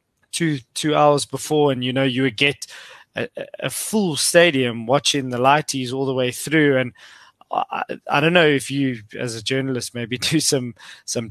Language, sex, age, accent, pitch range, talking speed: English, male, 20-39, South African, 115-135 Hz, 185 wpm